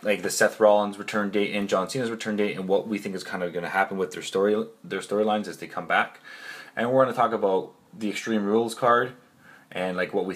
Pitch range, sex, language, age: 90-110 Hz, male, English, 20-39